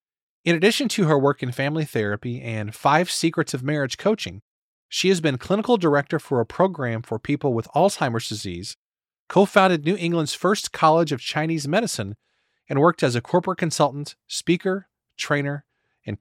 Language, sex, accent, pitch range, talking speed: English, male, American, 125-170 Hz, 165 wpm